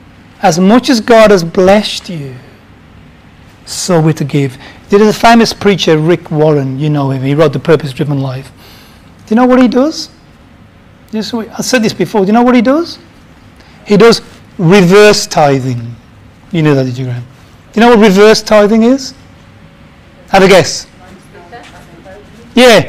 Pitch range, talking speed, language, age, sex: 145-225 Hz, 170 wpm, English, 40-59, male